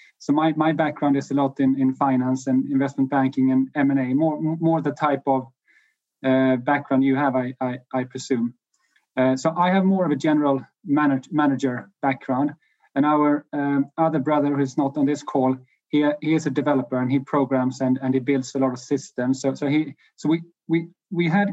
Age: 30-49